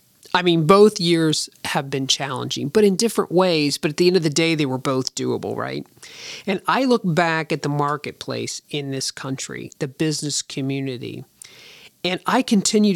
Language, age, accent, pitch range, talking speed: English, 40-59, American, 135-180 Hz, 180 wpm